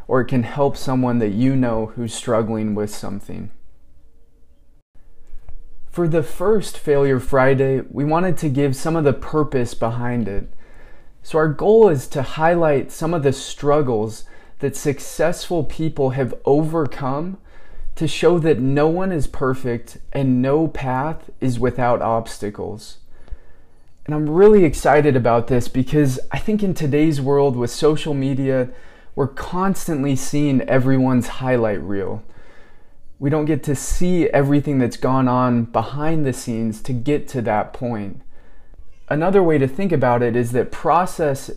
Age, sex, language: 20-39, male, English